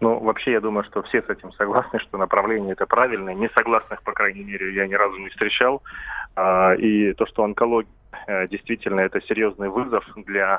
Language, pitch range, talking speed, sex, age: Russian, 100-115 Hz, 175 wpm, male, 20-39